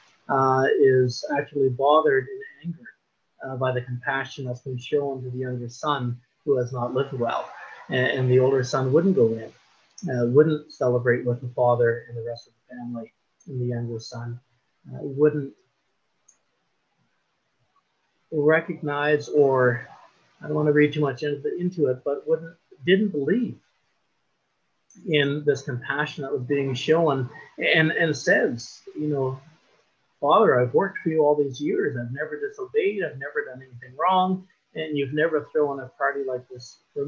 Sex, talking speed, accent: male, 165 wpm, American